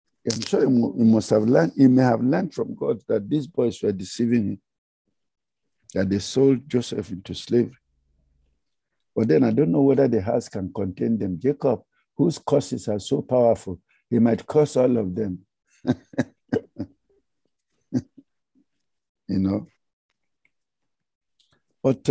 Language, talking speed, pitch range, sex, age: English, 140 wpm, 105-145 Hz, male, 60-79